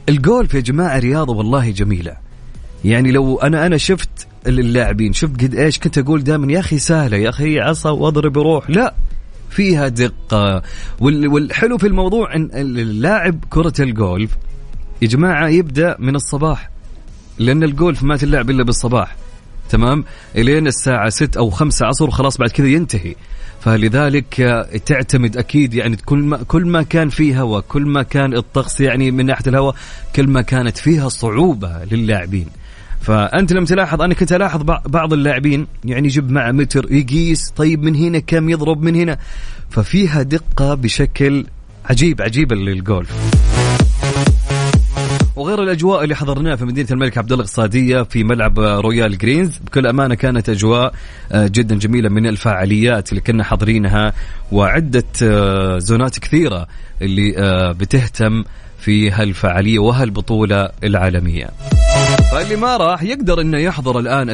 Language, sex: Arabic, male